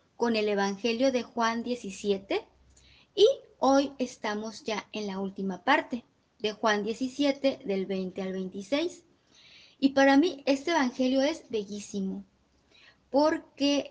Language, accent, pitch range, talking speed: Spanish, Mexican, 215-275 Hz, 125 wpm